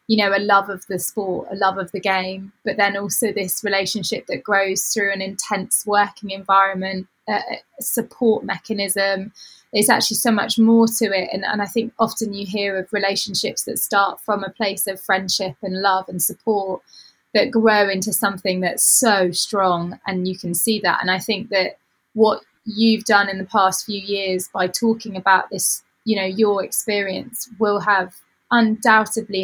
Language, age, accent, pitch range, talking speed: English, 20-39, British, 190-215 Hz, 180 wpm